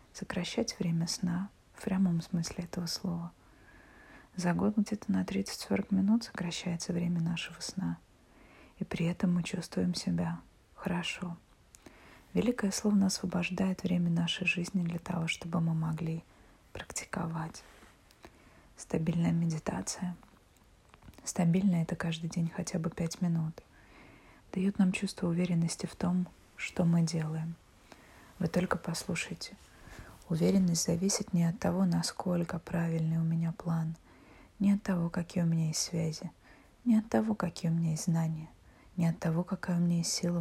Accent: native